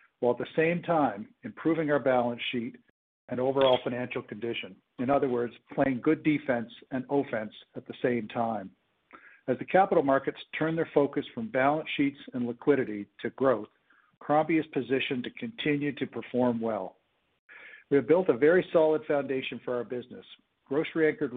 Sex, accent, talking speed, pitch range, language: male, American, 165 wpm, 120-145 Hz, English